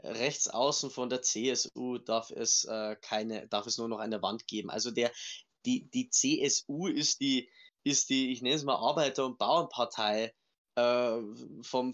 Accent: German